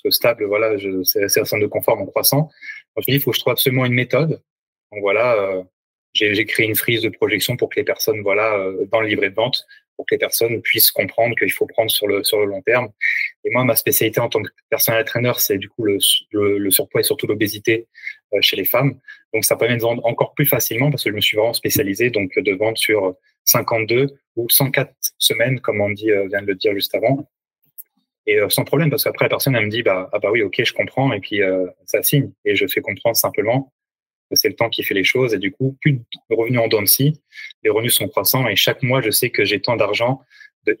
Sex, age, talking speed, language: male, 20-39, 250 wpm, French